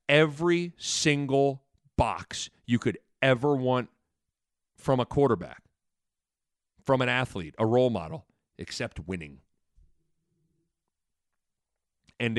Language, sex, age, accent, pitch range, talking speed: English, male, 40-59, American, 110-150 Hz, 90 wpm